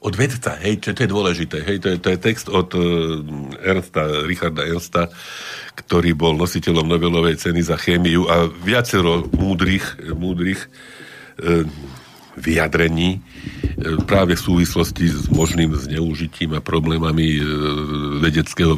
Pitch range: 80-95 Hz